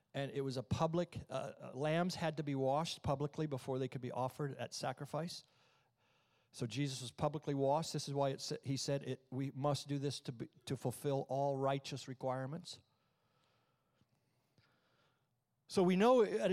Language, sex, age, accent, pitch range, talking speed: English, male, 50-69, American, 130-165 Hz, 175 wpm